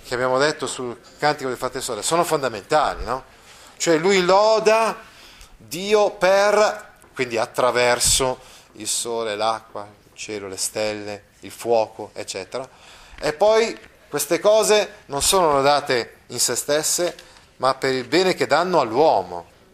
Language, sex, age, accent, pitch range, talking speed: Italian, male, 30-49, native, 120-170 Hz, 135 wpm